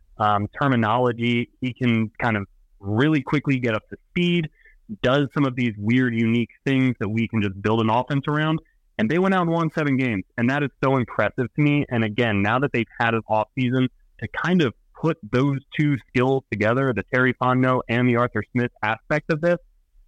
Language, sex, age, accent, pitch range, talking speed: English, male, 20-39, American, 105-135 Hz, 205 wpm